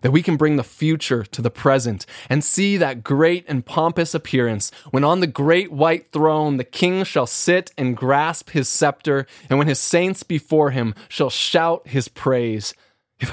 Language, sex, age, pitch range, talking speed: English, male, 20-39, 130-170 Hz, 185 wpm